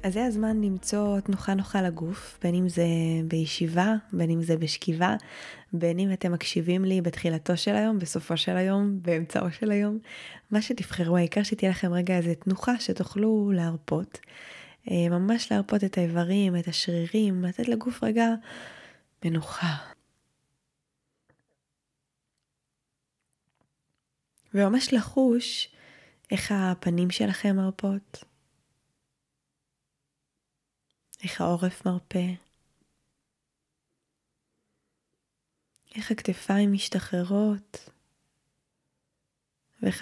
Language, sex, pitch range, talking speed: Hebrew, female, 160-205 Hz, 95 wpm